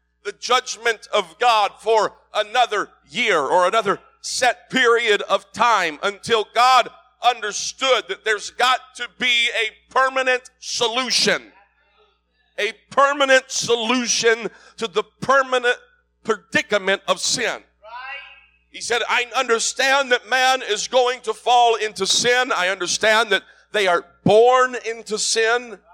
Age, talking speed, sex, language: 50-69, 125 wpm, male, English